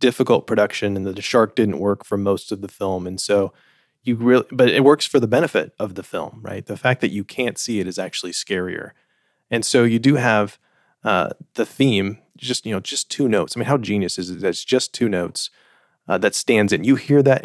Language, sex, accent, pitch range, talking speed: English, male, American, 100-125 Hz, 235 wpm